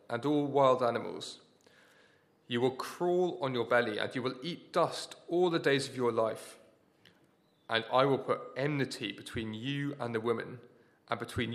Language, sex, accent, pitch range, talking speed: English, male, British, 115-145 Hz, 170 wpm